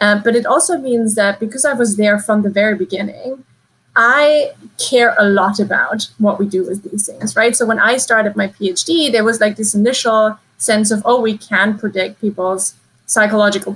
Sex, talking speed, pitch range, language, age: female, 195 wpm, 205-235 Hz, English, 20-39